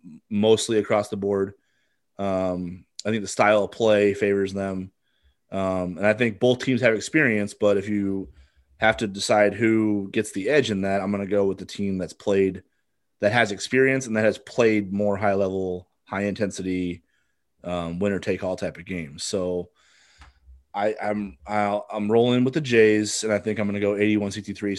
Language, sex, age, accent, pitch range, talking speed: English, male, 30-49, American, 90-105 Hz, 190 wpm